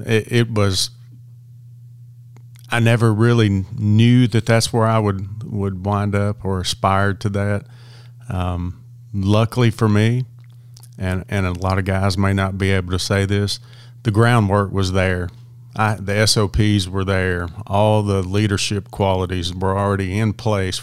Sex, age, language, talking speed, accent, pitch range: male, 40-59, English, 155 wpm, American, 95-120 Hz